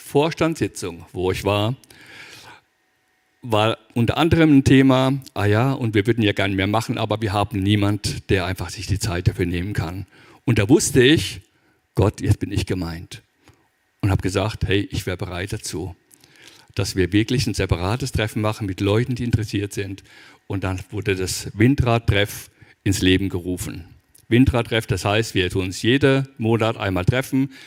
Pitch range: 100-120 Hz